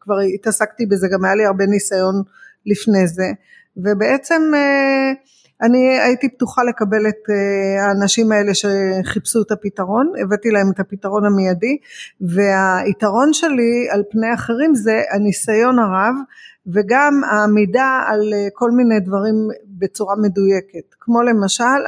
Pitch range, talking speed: 200-250 Hz, 120 wpm